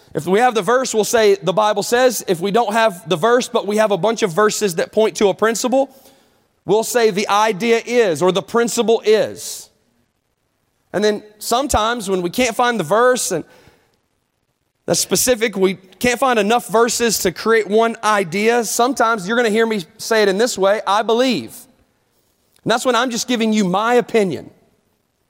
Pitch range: 195-240 Hz